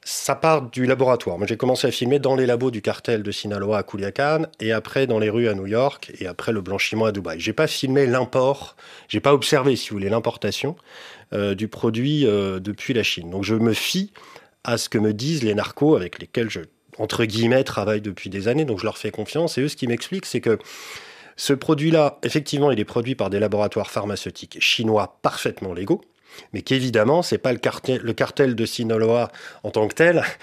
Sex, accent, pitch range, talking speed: male, French, 110-155 Hz, 220 wpm